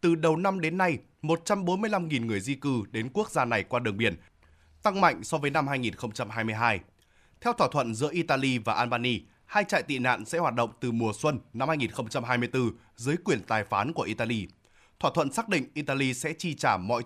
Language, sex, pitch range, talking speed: Vietnamese, male, 120-165 Hz, 195 wpm